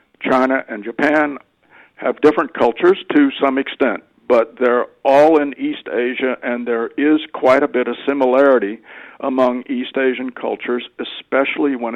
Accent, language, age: American, English, 60-79